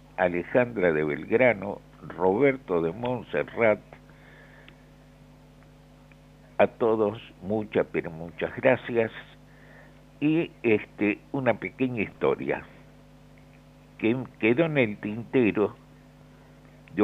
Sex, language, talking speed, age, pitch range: male, Spanish, 80 wpm, 60-79, 100-135 Hz